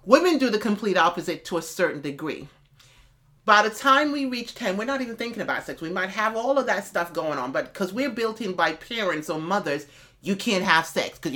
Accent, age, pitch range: American, 30-49, 165-215 Hz